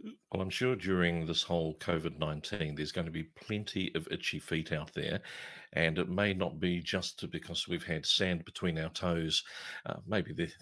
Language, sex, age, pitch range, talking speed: English, male, 50-69, 85-95 Hz, 180 wpm